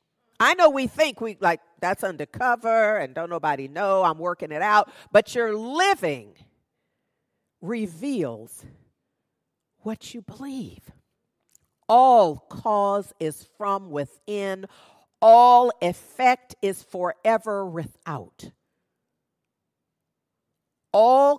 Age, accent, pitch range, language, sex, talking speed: 50-69, American, 180-260 Hz, English, female, 95 wpm